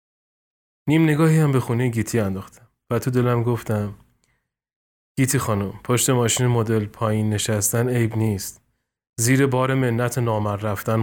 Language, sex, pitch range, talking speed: Persian, male, 110-135 Hz, 135 wpm